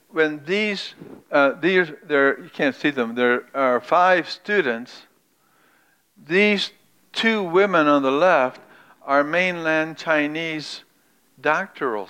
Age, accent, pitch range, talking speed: 60-79, American, 130-155 Hz, 110 wpm